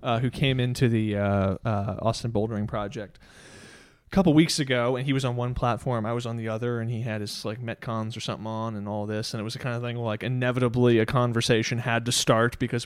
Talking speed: 245 wpm